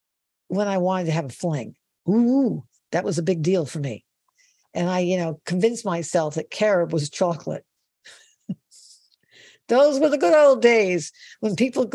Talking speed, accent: 165 wpm, American